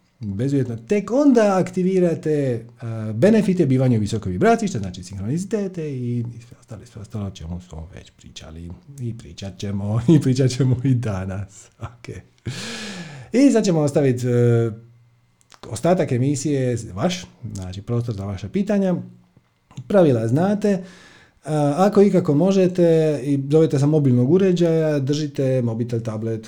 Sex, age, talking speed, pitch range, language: male, 40-59, 130 wpm, 110-160 Hz, Croatian